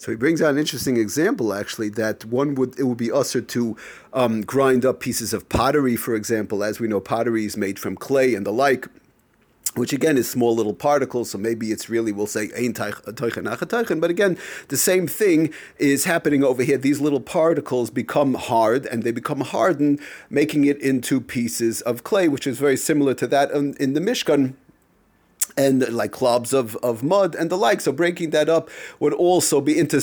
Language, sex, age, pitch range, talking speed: English, male, 40-59, 115-145 Hz, 195 wpm